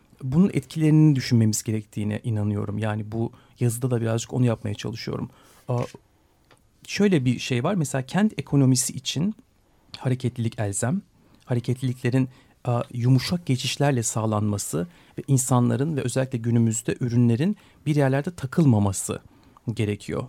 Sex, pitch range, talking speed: male, 115-140 Hz, 110 wpm